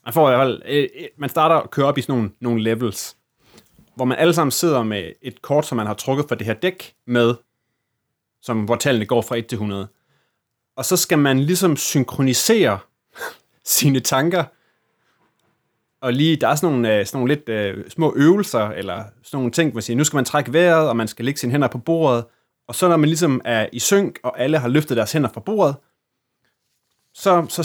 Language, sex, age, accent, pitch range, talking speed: Danish, male, 30-49, native, 120-155 Hz, 205 wpm